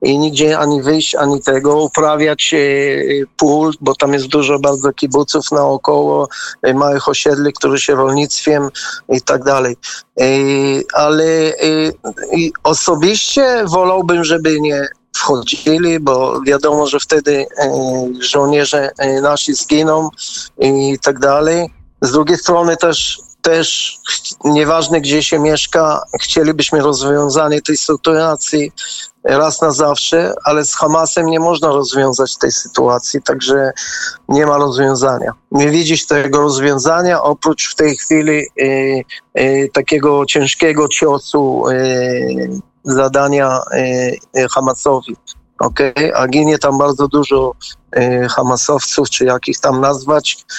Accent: native